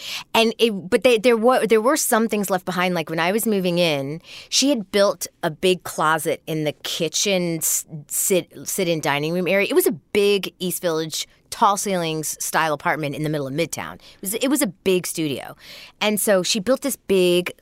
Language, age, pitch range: English, 30-49, 170-215 Hz